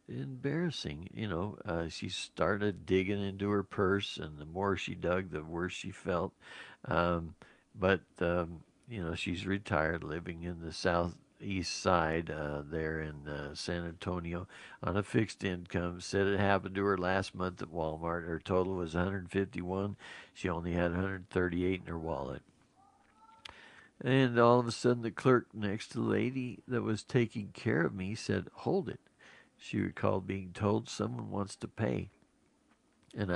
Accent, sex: American, male